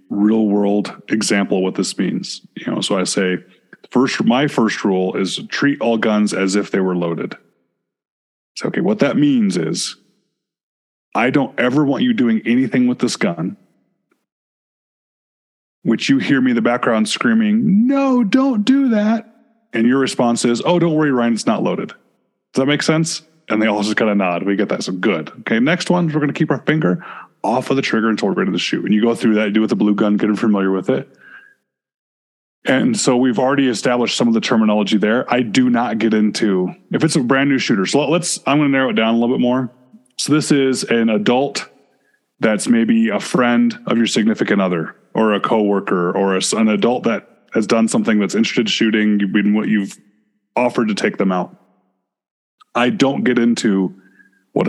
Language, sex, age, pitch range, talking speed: English, male, 20-39, 105-160 Hz, 205 wpm